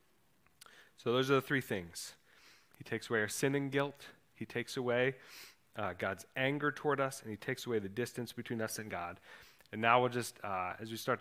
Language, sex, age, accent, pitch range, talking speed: English, male, 30-49, American, 110-135 Hz, 210 wpm